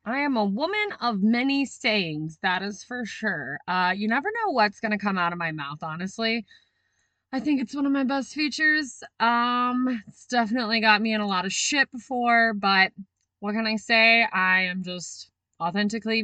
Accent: American